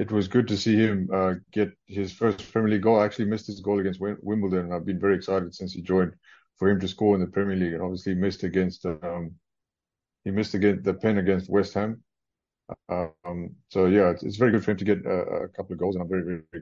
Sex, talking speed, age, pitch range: male, 255 wpm, 30-49, 90-100 Hz